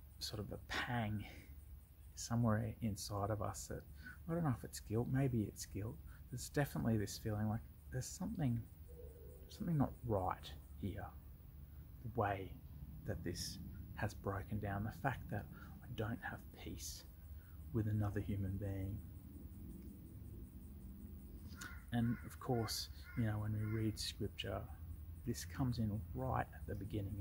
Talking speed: 140 wpm